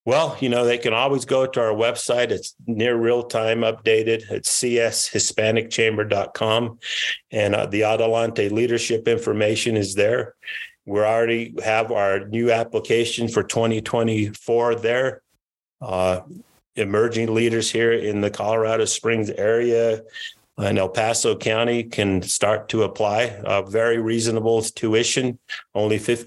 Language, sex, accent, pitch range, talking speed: English, male, American, 105-115 Hz, 130 wpm